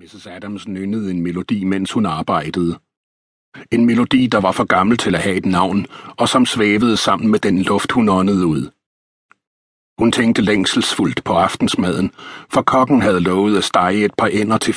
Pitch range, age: 90-110 Hz, 60-79